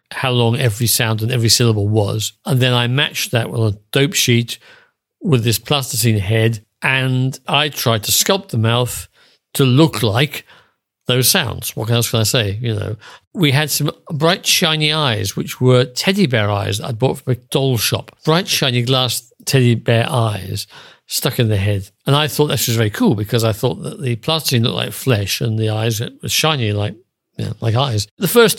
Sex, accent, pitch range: male, British, 115-150 Hz